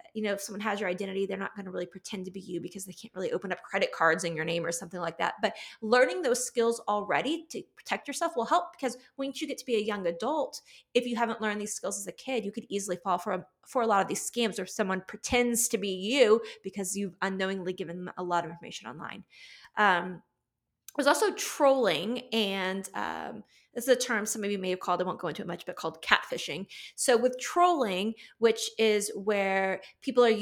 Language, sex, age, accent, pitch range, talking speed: English, female, 20-39, American, 190-255 Hz, 235 wpm